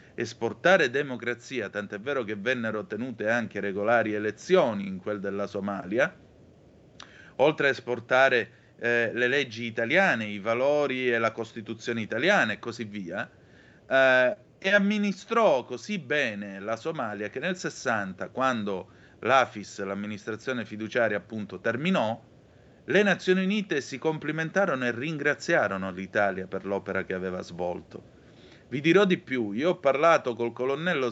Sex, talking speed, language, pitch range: male, 130 wpm, Italian, 105-135 Hz